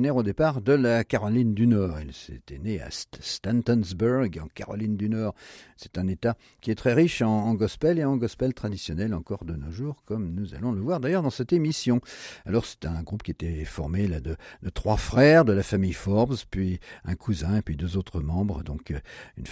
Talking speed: 210 wpm